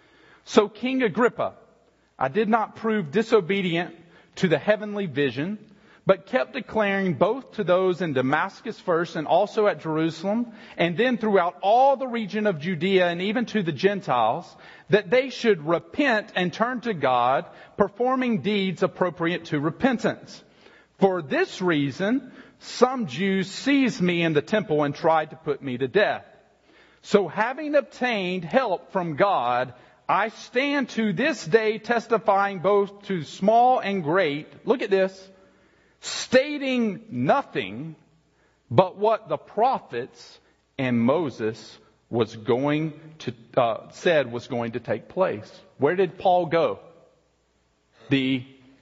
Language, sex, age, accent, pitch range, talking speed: English, male, 40-59, American, 160-220 Hz, 135 wpm